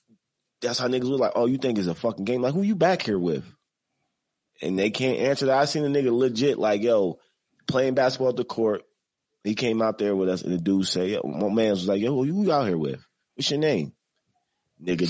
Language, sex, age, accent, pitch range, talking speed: English, male, 30-49, American, 90-125 Hz, 240 wpm